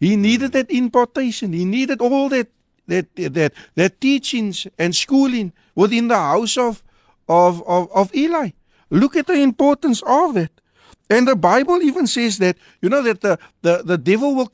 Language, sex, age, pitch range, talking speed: English, male, 60-79, 175-250 Hz, 175 wpm